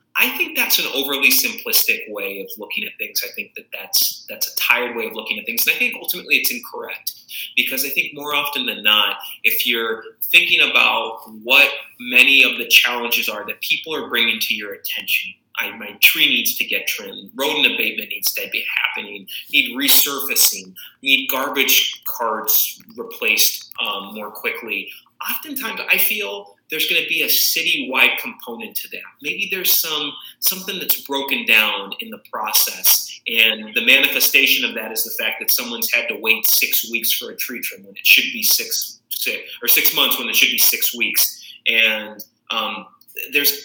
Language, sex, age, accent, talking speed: English, male, 30-49, American, 185 wpm